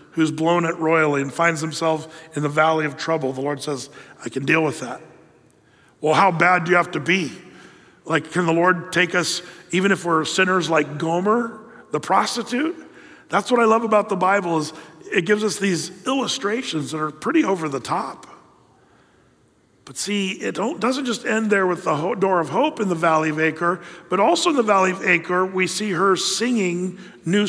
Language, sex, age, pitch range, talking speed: English, male, 40-59, 160-195 Hz, 195 wpm